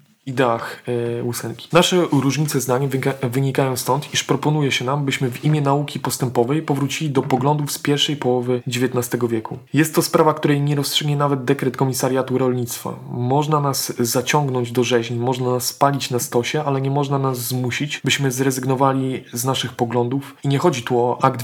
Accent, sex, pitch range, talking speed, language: native, male, 125-145 Hz, 170 wpm, Polish